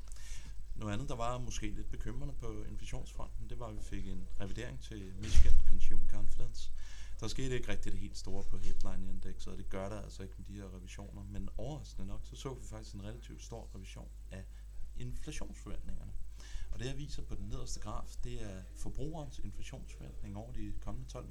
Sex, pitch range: male, 95-115 Hz